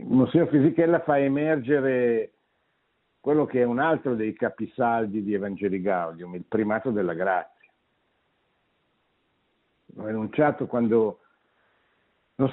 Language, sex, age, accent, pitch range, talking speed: Italian, male, 60-79, native, 100-140 Hz, 110 wpm